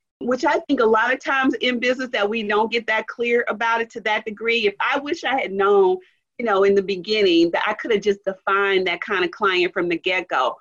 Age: 40-59